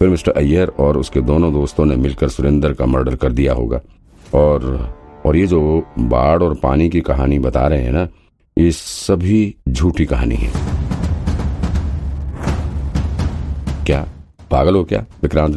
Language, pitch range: Hindi, 70-85 Hz